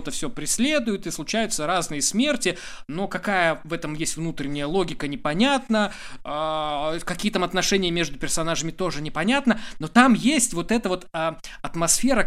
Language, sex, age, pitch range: Russian, male, 20-39, 140-200 Hz